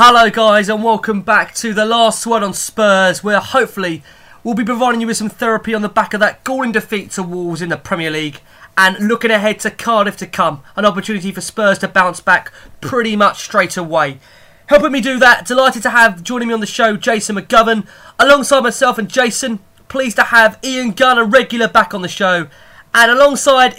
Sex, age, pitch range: male, 20-39, 180-230 Hz